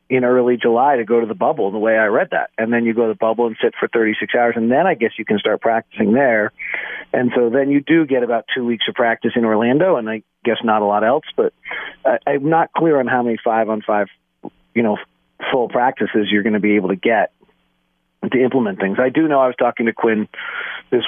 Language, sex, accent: English, male, American